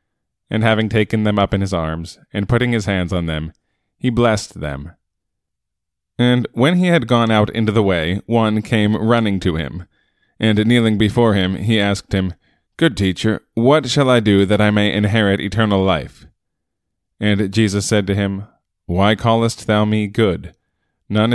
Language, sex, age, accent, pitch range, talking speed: English, male, 20-39, American, 95-115 Hz, 170 wpm